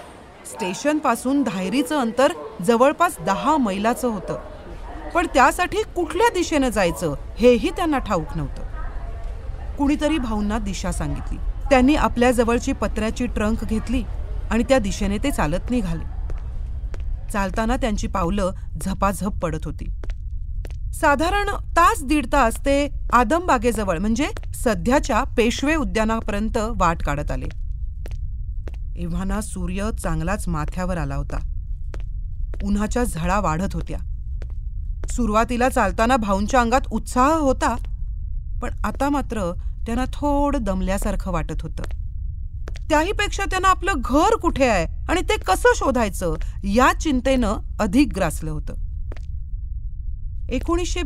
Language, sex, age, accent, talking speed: Marathi, female, 40-59, native, 100 wpm